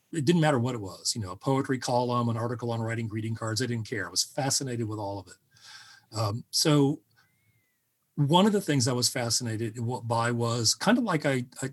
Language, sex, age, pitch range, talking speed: English, male, 40-59, 115-135 Hz, 220 wpm